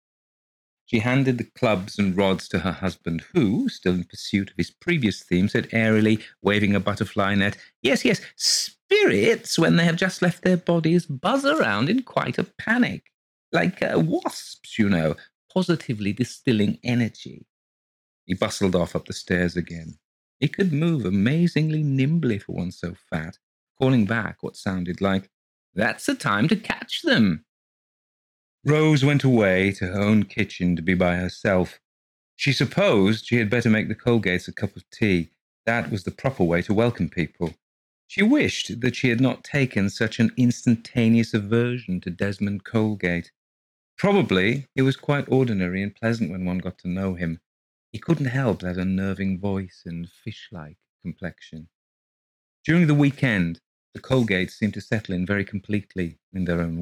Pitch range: 90-130 Hz